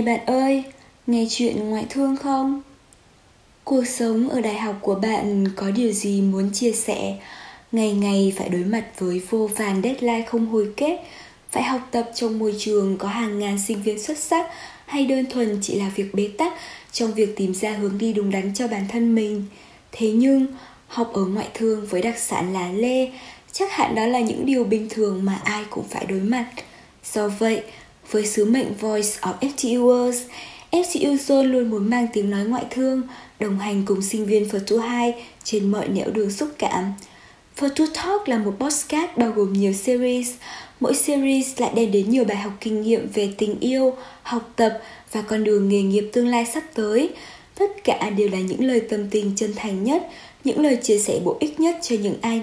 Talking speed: 200 wpm